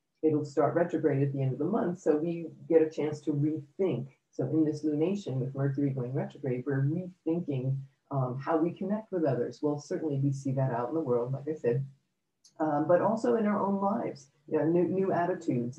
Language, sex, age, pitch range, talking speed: English, female, 40-59, 145-175 Hz, 215 wpm